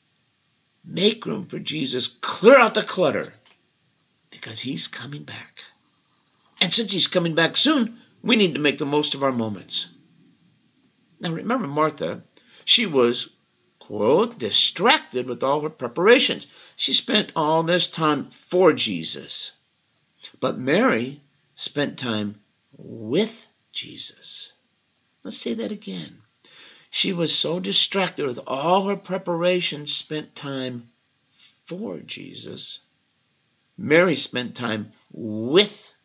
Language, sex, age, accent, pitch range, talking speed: English, male, 50-69, American, 125-180 Hz, 120 wpm